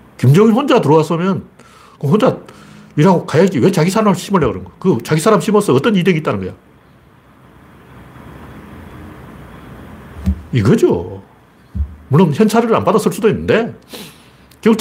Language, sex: Korean, male